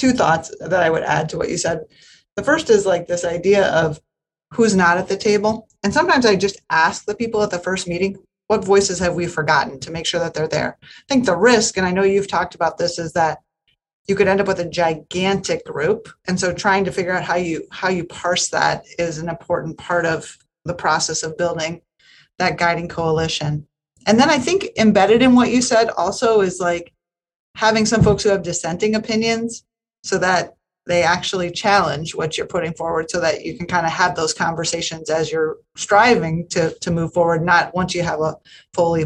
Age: 30-49